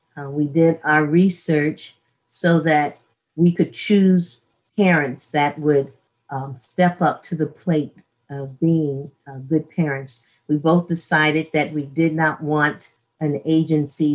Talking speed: 145 wpm